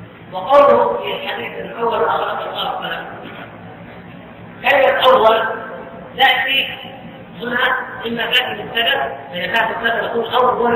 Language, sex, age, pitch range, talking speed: Arabic, female, 40-59, 220-255 Hz, 105 wpm